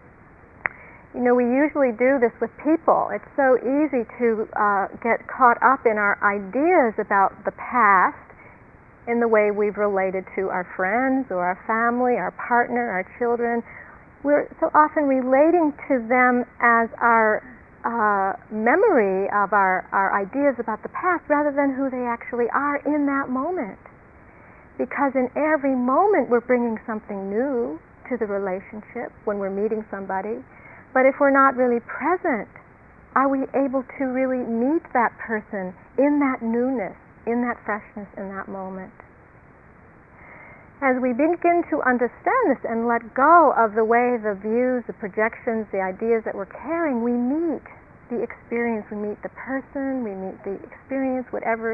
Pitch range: 215-270 Hz